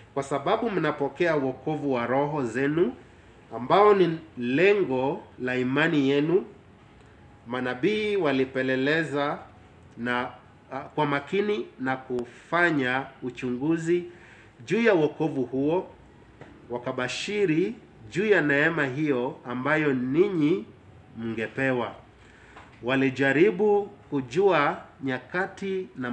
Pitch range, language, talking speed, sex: 125-155 Hz, English, 85 wpm, male